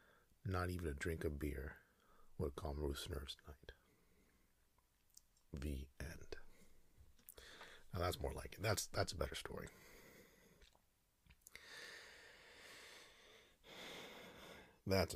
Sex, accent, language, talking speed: male, American, English, 95 wpm